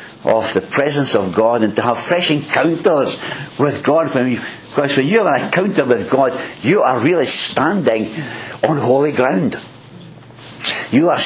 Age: 60-79